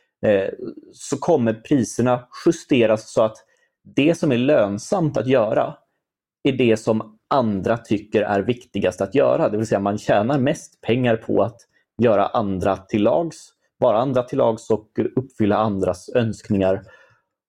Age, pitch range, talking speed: 30-49, 105-125 Hz, 140 wpm